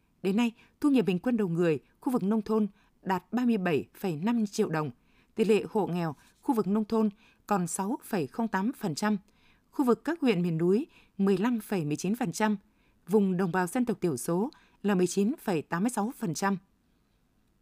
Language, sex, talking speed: Vietnamese, female, 145 wpm